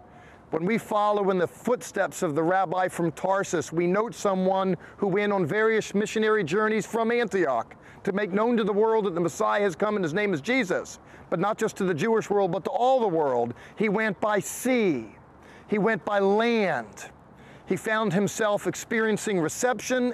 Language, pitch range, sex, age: English, 180-220 Hz, male, 40-59